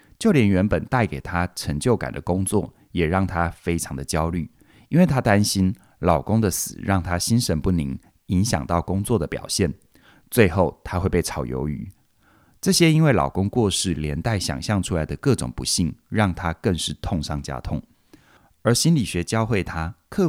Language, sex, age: Chinese, male, 30-49